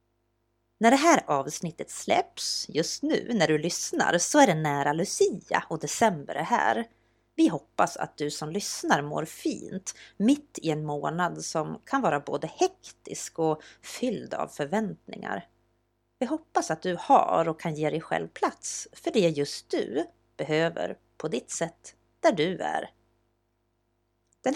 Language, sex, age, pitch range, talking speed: Swedish, female, 30-49, 150-230 Hz, 155 wpm